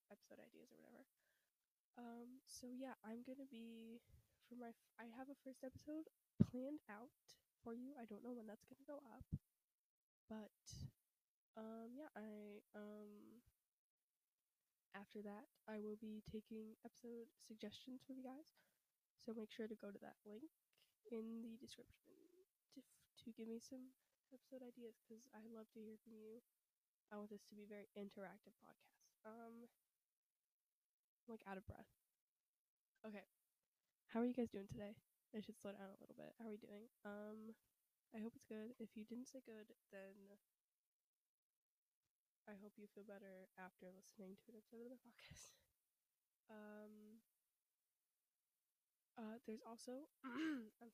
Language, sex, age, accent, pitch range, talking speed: English, female, 10-29, American, 210-245 Hz, 155 wpm